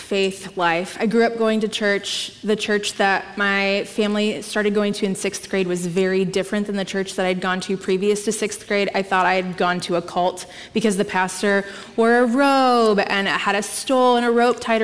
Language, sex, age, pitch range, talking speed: English, female, 20-39, 190-230 Hz, 225 wpm